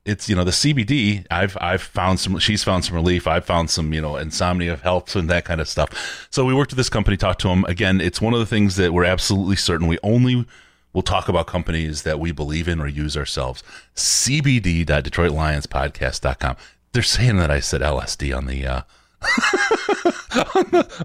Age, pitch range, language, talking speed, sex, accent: 30-49, 85-115 Hz, English, 195 wpm, male, American